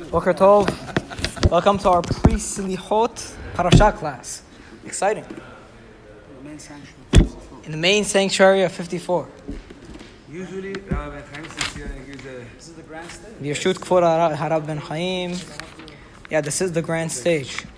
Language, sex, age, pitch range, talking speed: English, male, 20-39, 155-195 Hz, 90 wpm